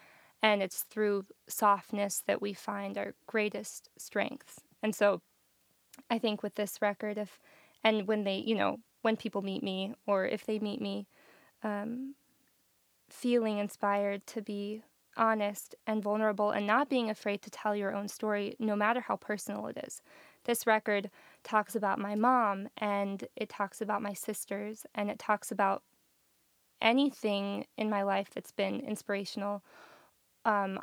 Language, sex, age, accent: English, female, 20-39, American